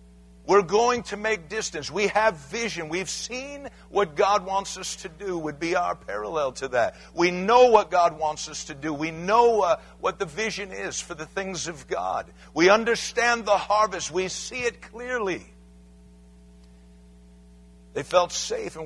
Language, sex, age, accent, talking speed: English, male, 60-79, American, 170 wpm